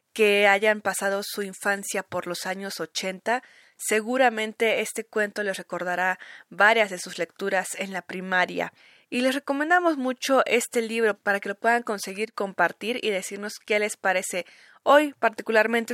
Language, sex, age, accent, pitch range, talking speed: Spanish, female, 20-39, Mexican, 190-235 Hz, 150 wpm